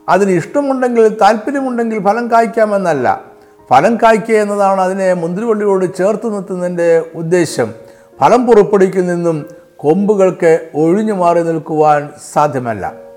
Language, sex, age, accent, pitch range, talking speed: Malayalam, male, 60-79, native, 185-235 Hz, 95 wpm